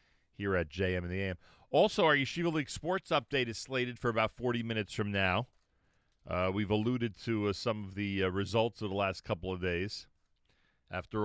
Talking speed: 195 wpm